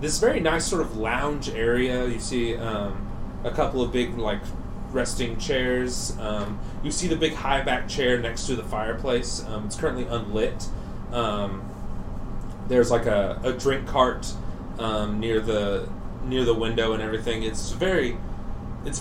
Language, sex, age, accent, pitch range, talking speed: English, male, 30-49, American, 105-145 Hz, 160 wpm